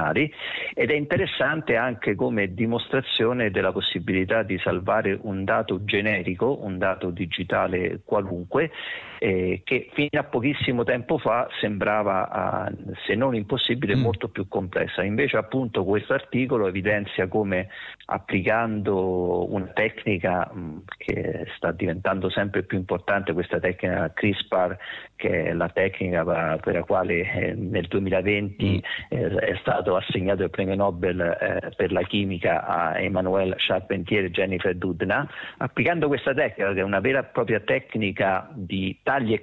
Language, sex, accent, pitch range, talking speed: Italian, male, native, 95-125 Hz, 135 wpm